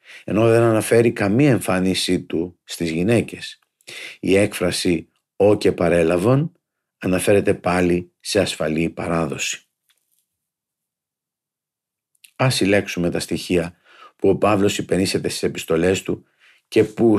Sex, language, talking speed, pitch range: male, Greek, 110 wpm, 90-110 Hz